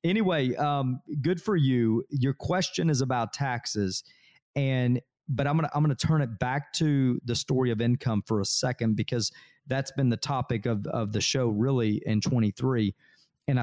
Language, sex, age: English, male, 40-59